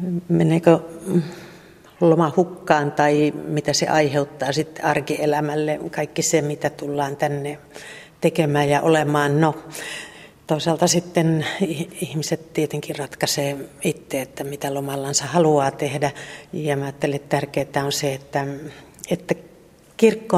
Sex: female